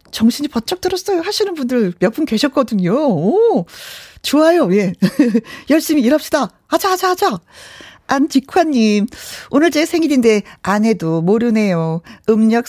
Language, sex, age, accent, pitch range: Korean, female, 40-59, native, 200-310 Hz